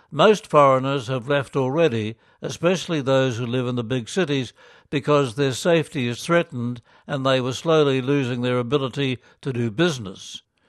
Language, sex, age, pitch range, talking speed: English, male, 60-79, 125-145 Hz, 155 wpm